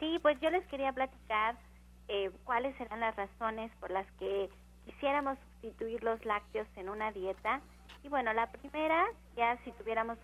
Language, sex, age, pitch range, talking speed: Spanish, female, 30-49, 205-250 Hz, 165 wpm